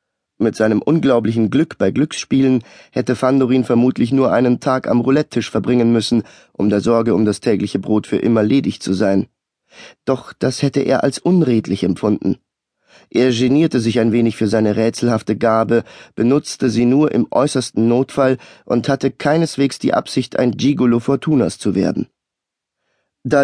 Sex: male